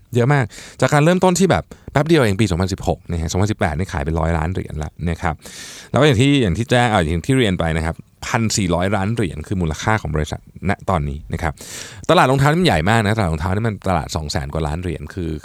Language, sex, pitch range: Thai, male, 85-130 Hz